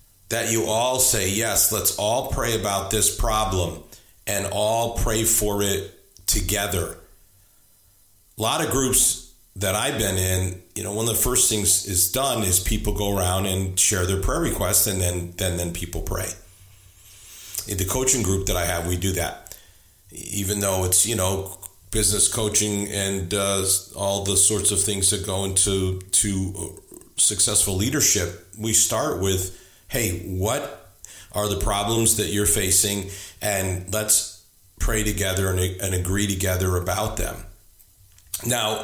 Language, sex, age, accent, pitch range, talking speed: English, male, 50-69, American, 95-110 Hz, 155 wpm